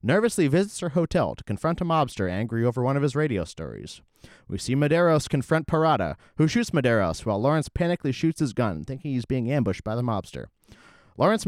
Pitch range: 105-160 Hz